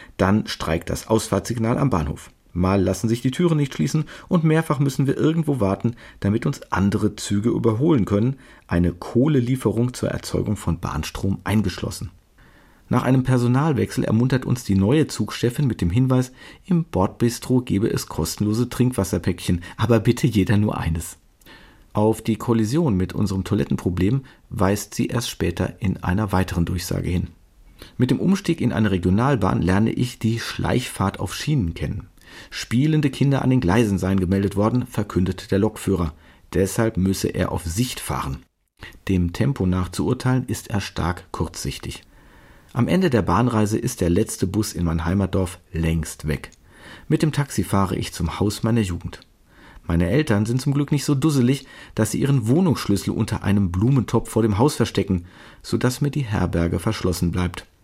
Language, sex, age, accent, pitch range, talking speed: German, male, 50-69, German, 95-125 Hz, 160 wpm